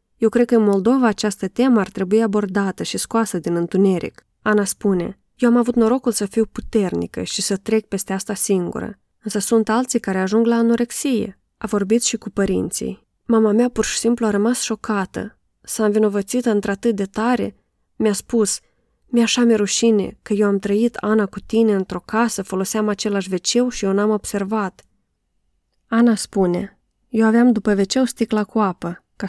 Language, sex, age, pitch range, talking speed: Romanian, female, 20-39, 185-225 Hz, 175 wpm